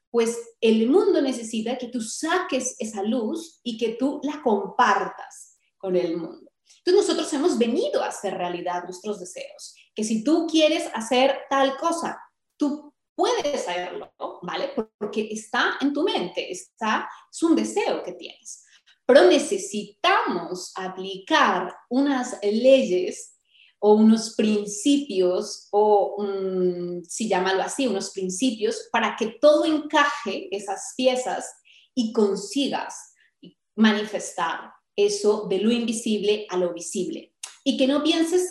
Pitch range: 205-295 Hz